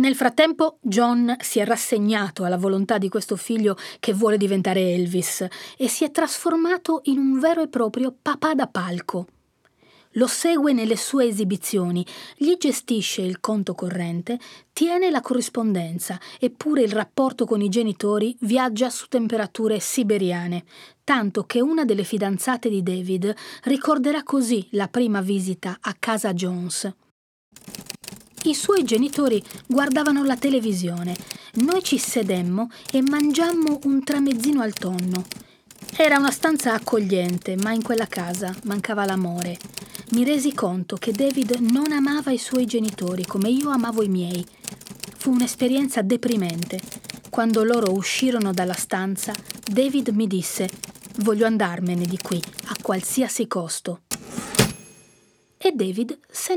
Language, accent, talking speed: Italian, native, 135 wpm